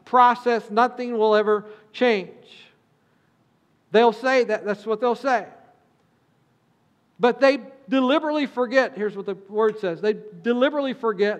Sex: male